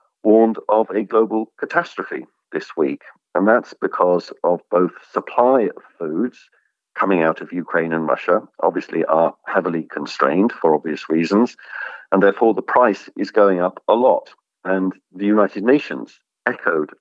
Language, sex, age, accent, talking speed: English, male, 50-69, British, 150 wpm